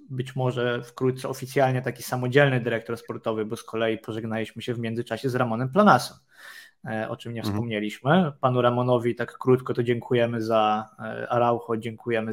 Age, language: 20-39, Polish